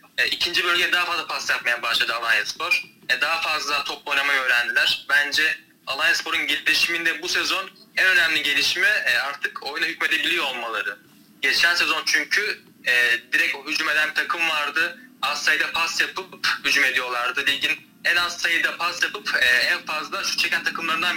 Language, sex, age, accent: Turkish, male, 30-49, native